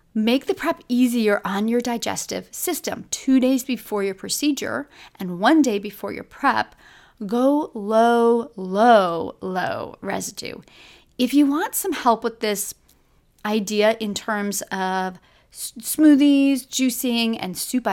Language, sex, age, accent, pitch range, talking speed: English, female, 30-49, American, 205-255 Hz, 130 wpm